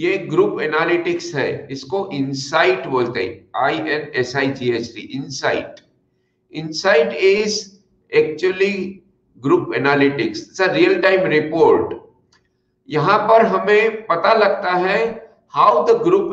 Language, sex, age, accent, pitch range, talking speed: English, male, 50-69, Indian, 175-235 Hz, 125 wpm